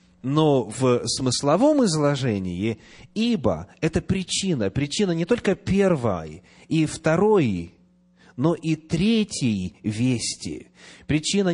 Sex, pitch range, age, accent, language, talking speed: male, 105-165 Hz, 30-49, native, Russian, 95 wpm